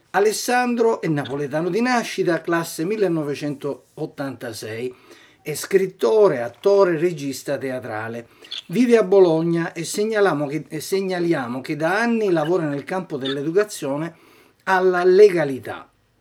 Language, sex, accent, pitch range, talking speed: Italian, male, native, 135-185 Hz, 100 wpm